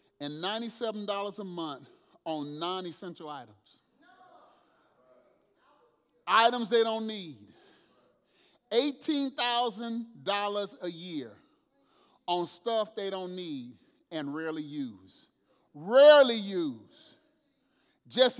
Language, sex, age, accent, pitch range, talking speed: English, male, 30-49, American, 205-290 Hz, 90 wpm